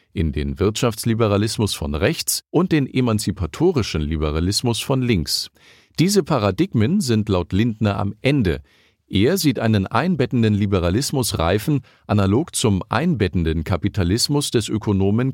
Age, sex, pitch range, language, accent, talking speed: 50-69, male, 95-125 Hz, German, German, 115 wpm